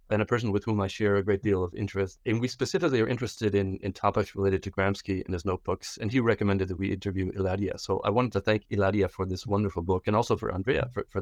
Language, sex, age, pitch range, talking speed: English, male, 40-59, 95-115 Hz, 260 wpm